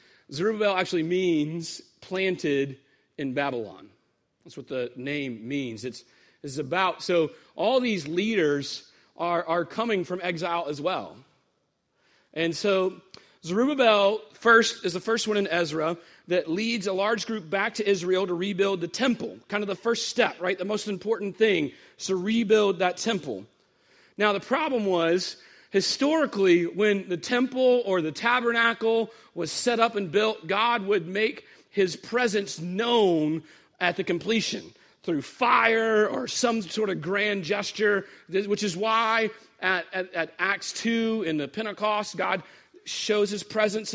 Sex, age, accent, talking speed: male, 40-59, American, 150 wpm